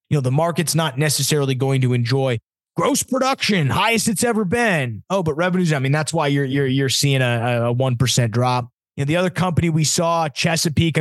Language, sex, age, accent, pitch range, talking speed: English, male, 20-39, American, 125-155 Hz, 220 wpm